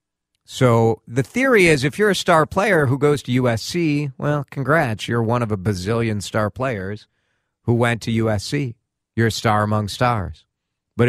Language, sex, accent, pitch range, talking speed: English, male, American, 90-135 Hz, 175 wpm